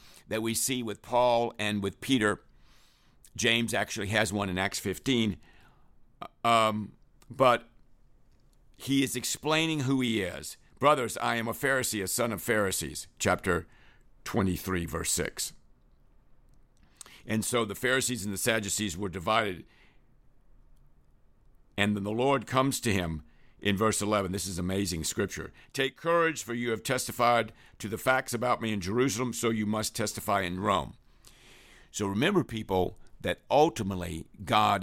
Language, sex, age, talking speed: English, male, 60-79, 145 wpm